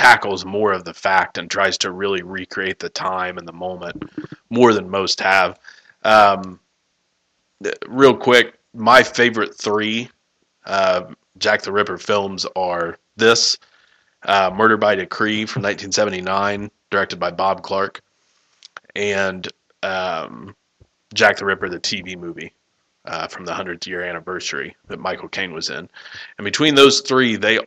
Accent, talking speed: American, 145 wpm